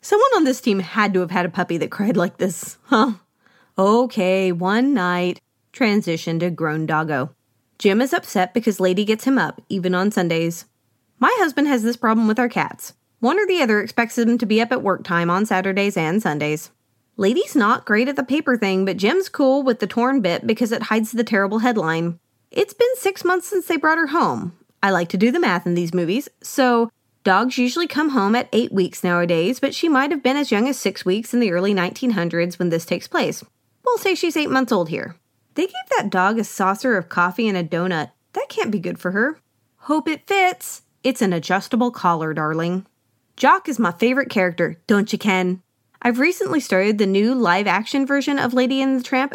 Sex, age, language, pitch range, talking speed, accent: female, 30-49, English, 185-265 Hz, 210 wpm, American